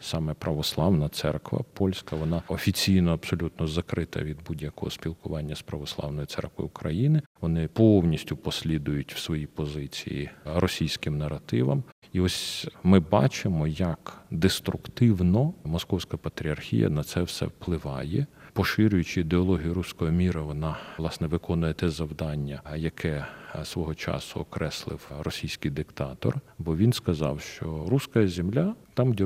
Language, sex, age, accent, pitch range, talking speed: Russian, male, 40-59, native, 80-100 Hz, 120 wpm